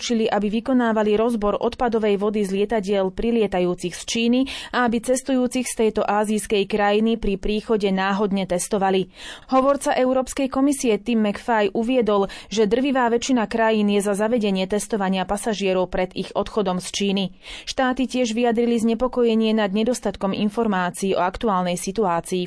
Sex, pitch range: female, 200-240 Hz